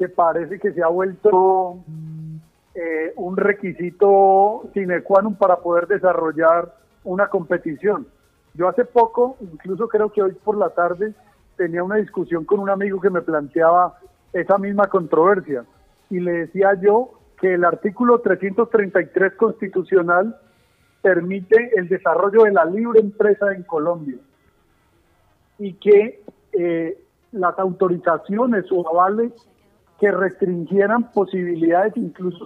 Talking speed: 125 wpm